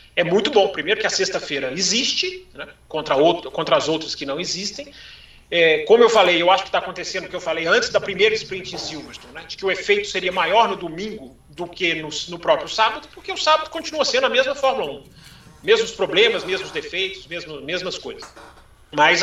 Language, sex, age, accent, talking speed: Portuguese, male, 40-59, Brazilian, 205 wpm